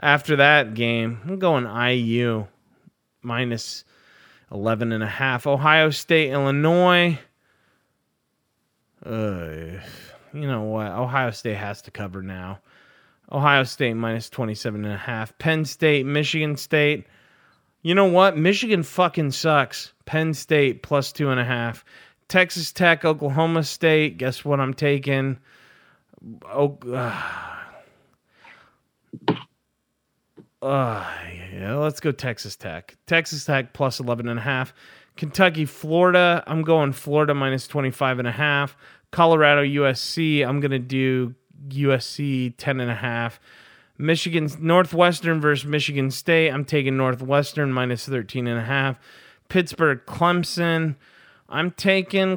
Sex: male